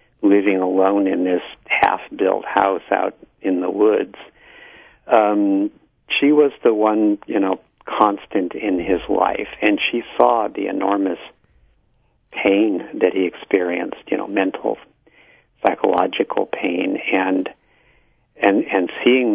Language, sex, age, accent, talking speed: English, male, 60-79, American, 125 wpm